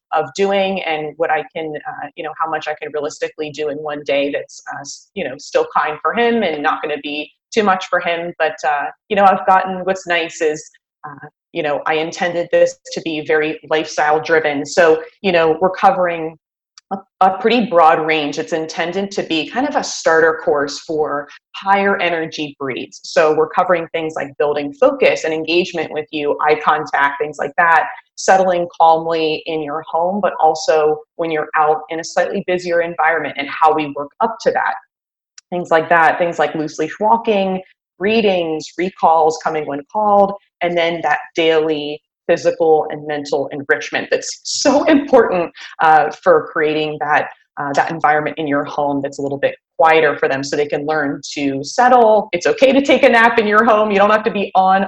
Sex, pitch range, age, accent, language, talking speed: female, 155-190 Hz, 30-49, American, English, 195 wpm